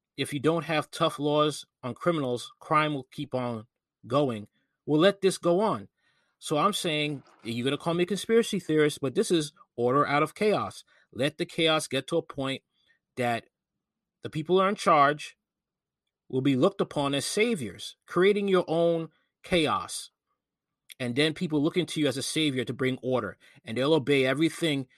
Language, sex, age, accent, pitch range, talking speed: English, male, 30-49, American, 125-160 Hz, 180 wpm